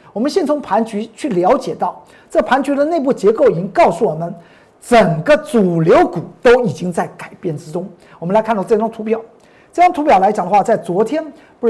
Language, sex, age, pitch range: Chinese, male, 50-69, 195-275 Hz